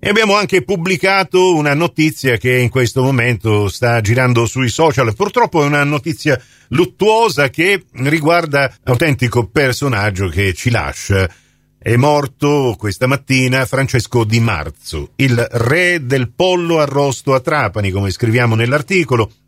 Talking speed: 130 wpm